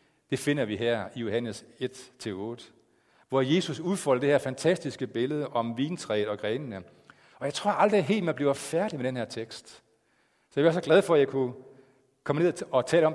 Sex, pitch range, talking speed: male, 125-155 Hz, 200 wpm